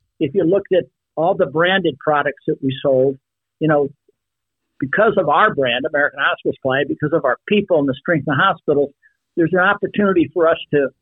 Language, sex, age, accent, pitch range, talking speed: English, male, 50-69, American, 145-175 Hz, 200 wpm